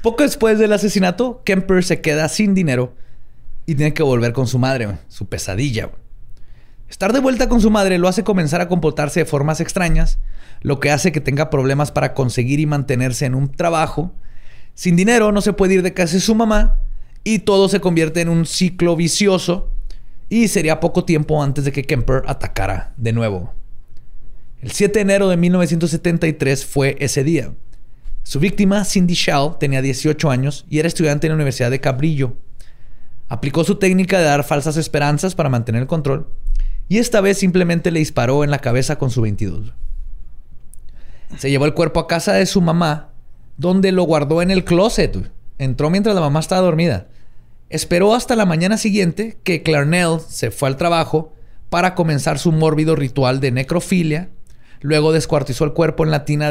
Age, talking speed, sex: 30-49, 180 wpm, male